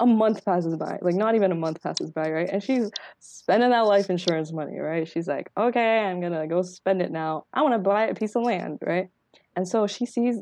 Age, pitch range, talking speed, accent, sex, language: 20-39, 170-225 Hz, 240 wpm, American, female, English